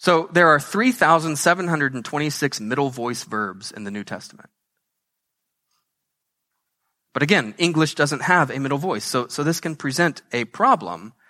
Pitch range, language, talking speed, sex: 125-170 Hz, English, 140 wpm, male